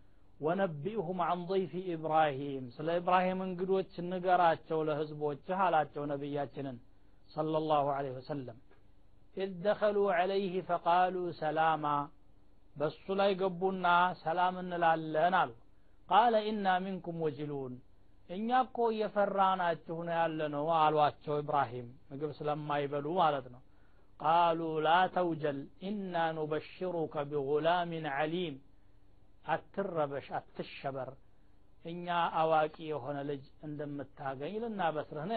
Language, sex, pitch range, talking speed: Amharic, male, 145-195 Hz, 90 wpm